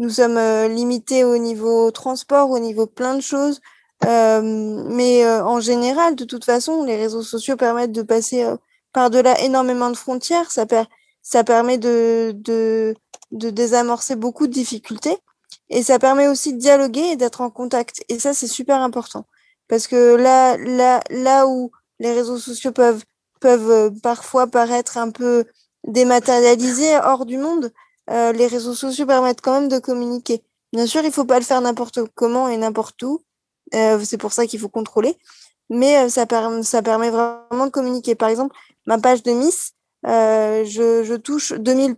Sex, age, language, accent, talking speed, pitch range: female, 20-39, French, French, 170 wpm, 235-265 Hz